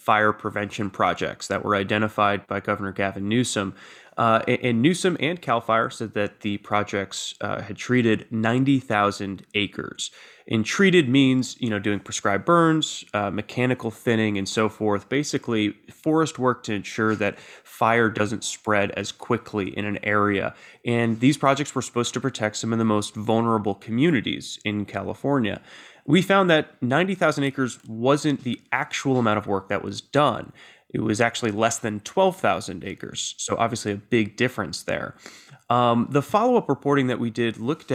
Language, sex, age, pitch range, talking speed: English, male, 20-39, 105-130 Hz, 165 wpm